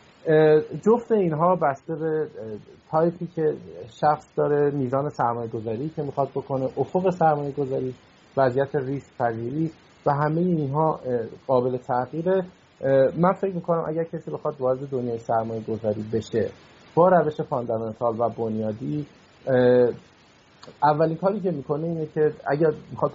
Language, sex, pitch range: Persian, male, 120-155 Hz